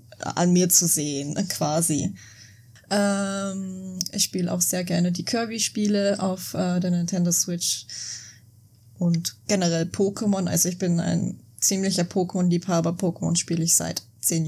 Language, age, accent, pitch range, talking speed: German, 20-39, German, 165-190 Hz, 135 wpm